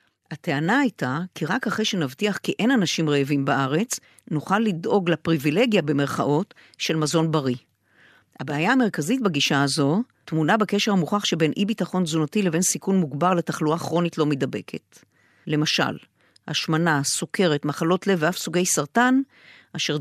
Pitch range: 155-205 Hz